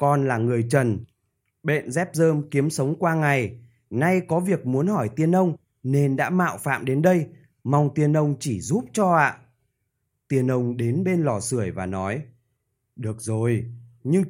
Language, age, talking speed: Vietnamese, 20-39, 175 wpm